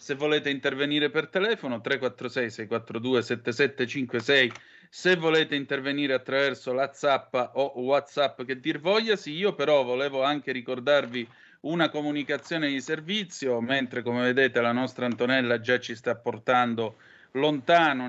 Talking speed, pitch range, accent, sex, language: 125 wpm, 125-150 Hz, native, male, Italian